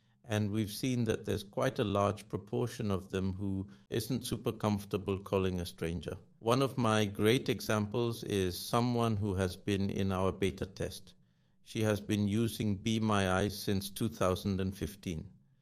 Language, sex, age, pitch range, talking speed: Danish, male, 60-79, 95-115 Hz, 160 wpm